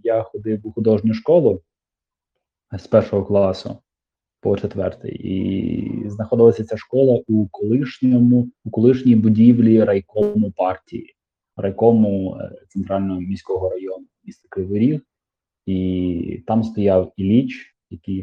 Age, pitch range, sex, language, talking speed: 20-39, 100-120 Hz, male, Ukrainian, 110 wpm